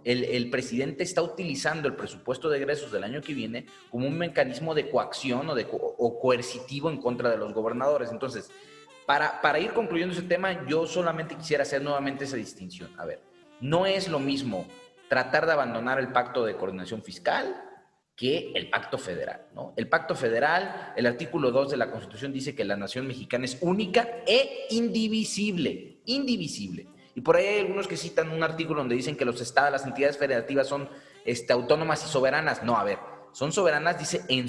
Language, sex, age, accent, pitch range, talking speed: Spanish, male, 30-49, Mexican, 120-180 Hz, 185 wpm